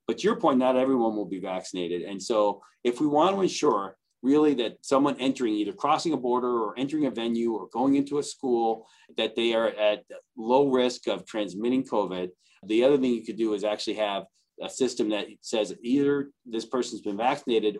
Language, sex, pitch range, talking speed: English, male, 100-130 Hz, 200 wpm